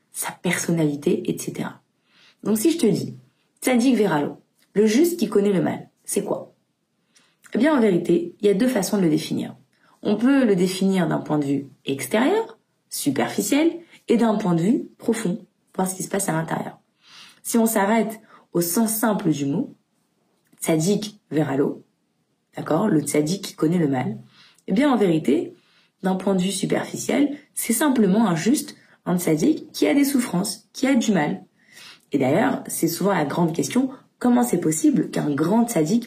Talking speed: 175 wpm